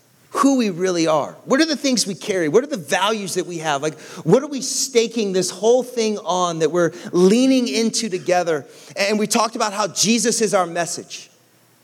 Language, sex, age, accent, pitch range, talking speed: English, male, 30-49, American, 155-200 Hz, 205 wpm